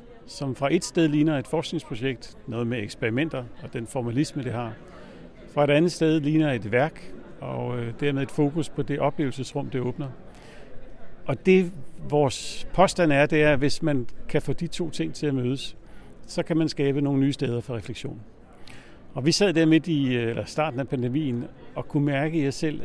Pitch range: 130-165 Hz